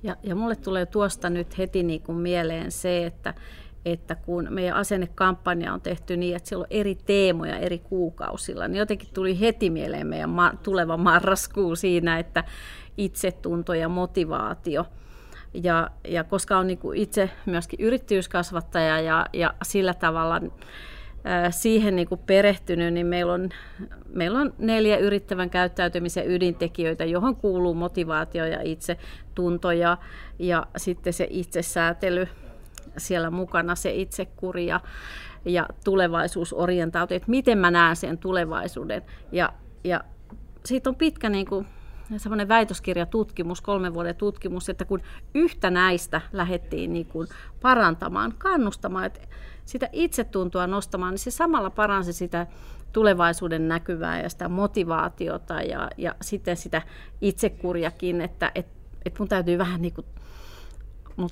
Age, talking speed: 40-59, 135 wpm